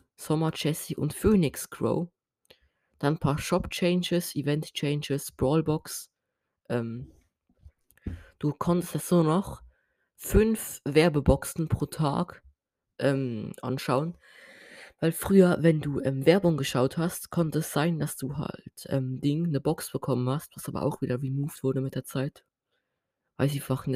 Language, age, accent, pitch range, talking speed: German, 20-39, German, 135-170 Hz, 145 wpm